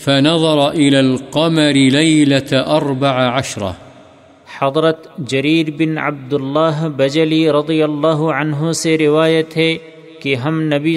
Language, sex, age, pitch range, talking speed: Urdu, male, 50-69, 145-160 Hz, 110 wpm